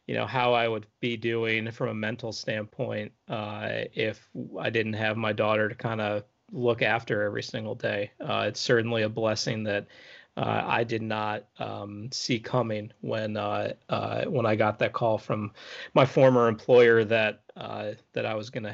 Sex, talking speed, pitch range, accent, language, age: male, 185 wpm, 110-125 Hz, American, English, 30-49